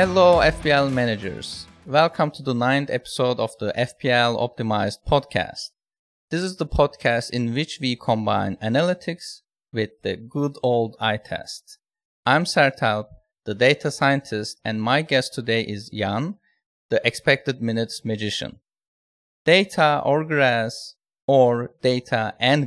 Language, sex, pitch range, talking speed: English, male, 115-150 Hz, 130 wpm